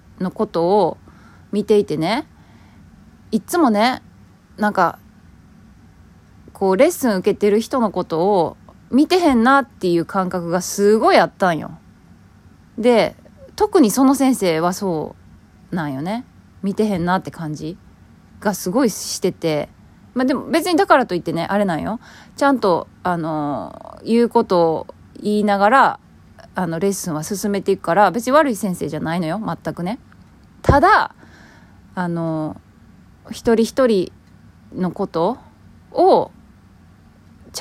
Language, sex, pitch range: Japanese, female, 165-250 Hz